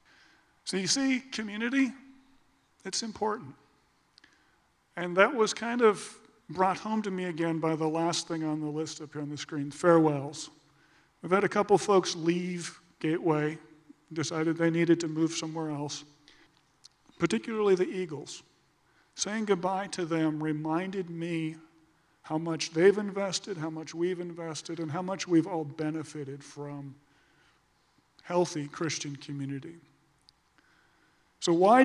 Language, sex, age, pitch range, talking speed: English, male, 40-59, 155-190 Hz, 140 wpm